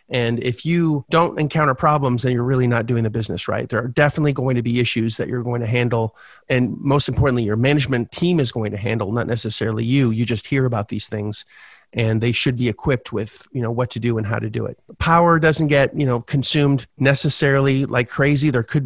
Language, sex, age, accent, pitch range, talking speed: English, male, 30-49, American, 115-135 Hz, 230 wpm